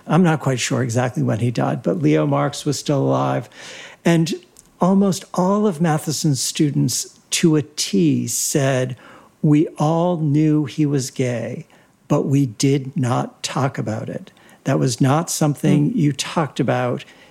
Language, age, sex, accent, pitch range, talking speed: English, 60-79, male, American, 135-175 Hz, 155 wpm